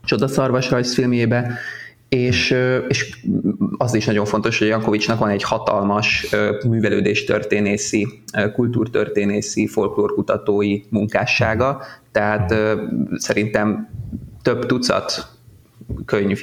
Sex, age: male, 20-39